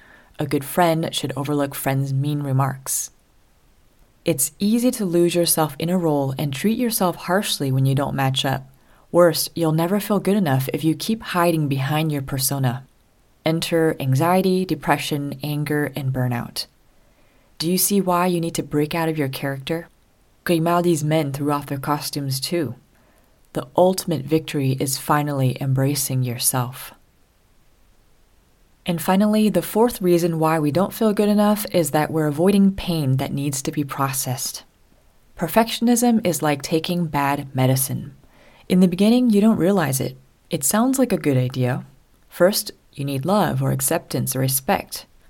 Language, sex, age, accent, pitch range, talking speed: English, female, 30-49, American, 135-180 Hz, 155 wpm